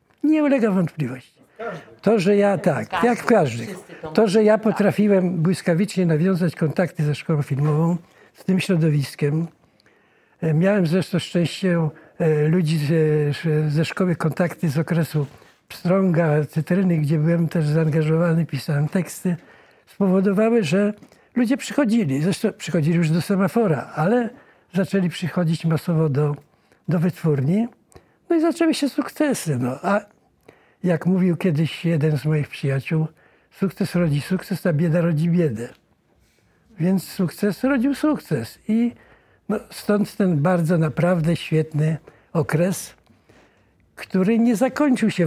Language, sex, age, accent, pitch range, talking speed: Polish, male, 60-79, native, 155-195 Hz, 125 wpm